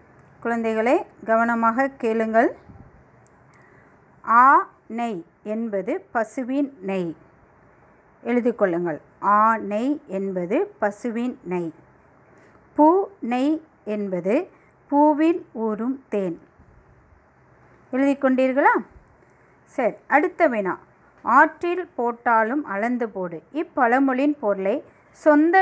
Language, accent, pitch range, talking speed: Tamil, native, 220-300 Hz, 75 wpm